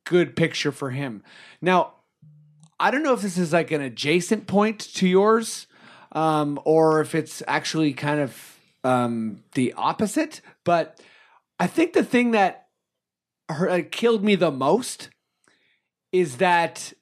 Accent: American